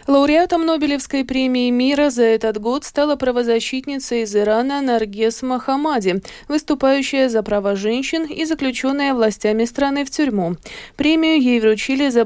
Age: 20-39